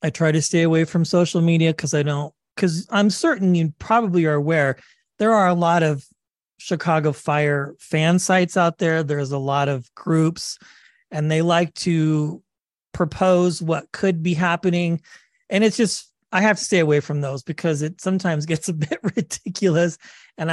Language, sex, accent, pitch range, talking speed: English, male, American, 150-195 Hz, 180 wpm